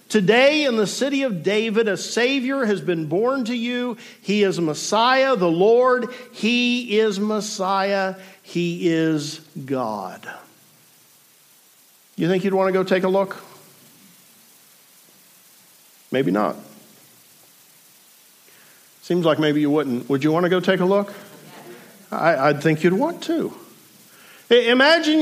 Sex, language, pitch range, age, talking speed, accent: male, English, 170-225 Hz, 50-69, 130 wpm, American